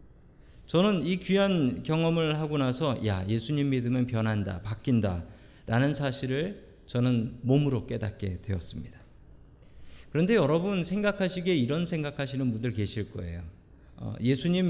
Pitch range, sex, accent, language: 110-170 Hz, male, native, Korean